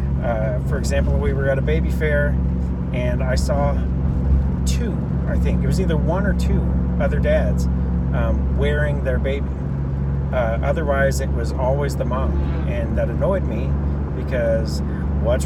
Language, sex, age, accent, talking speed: English, male, 30-49, American, 155 wpm